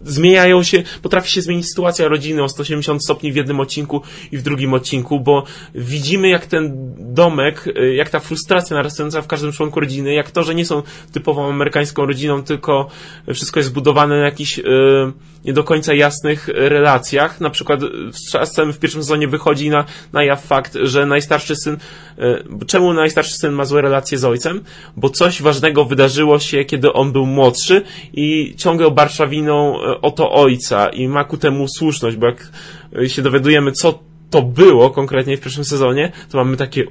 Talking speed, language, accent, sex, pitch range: 175 wpm, Polish, native, male, 140-160 Hz